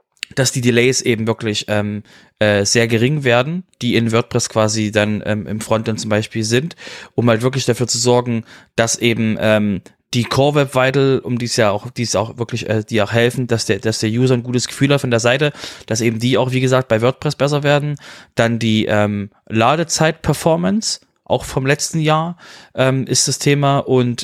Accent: German